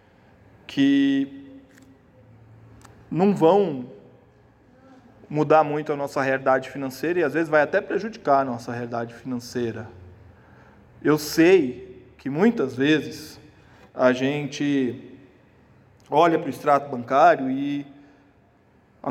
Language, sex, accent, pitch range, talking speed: Portuguese, male, Brazilian, 120-150 Hz, 105 wpm